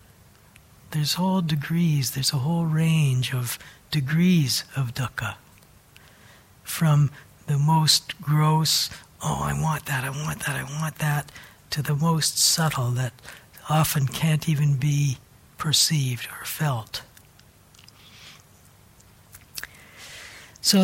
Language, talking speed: English, 110 wpm